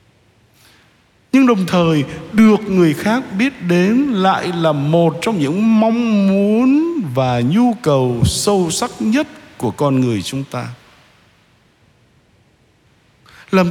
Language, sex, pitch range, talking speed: Vietnamese, male, 125-190 Hz, 120 wpm